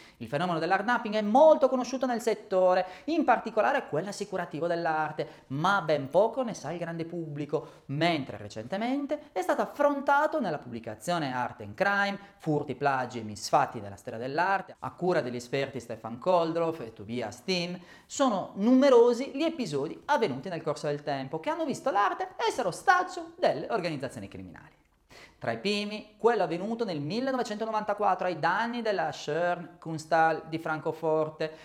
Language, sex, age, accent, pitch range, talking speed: Italian, male, 30-49, native, 145-235 Hz, 150 wpm